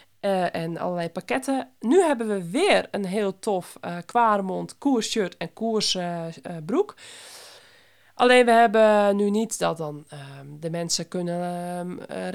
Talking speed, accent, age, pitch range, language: 150 wpm, Dutch, 20-39, 170-220 Hz, Dutch